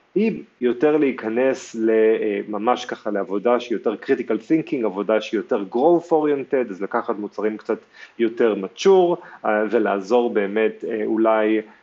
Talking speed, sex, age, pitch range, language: 120 wpm, male, 30-49, 110-140 Hz, Hebrew